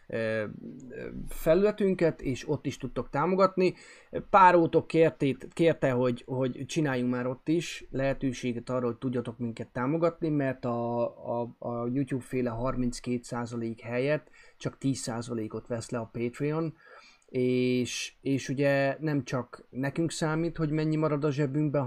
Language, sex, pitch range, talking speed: Hungarian, male, 120-150 Hz, 130 wpm